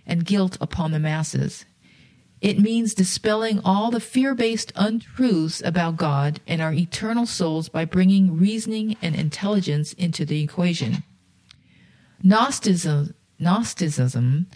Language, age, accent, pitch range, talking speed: English, 50-69, American, 160-200 Hz, 115 wpm